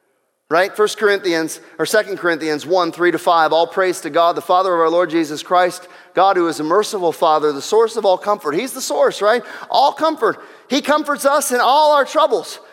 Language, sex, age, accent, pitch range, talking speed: English, male, 30-49, American, 200-300 Hz, 210 wpm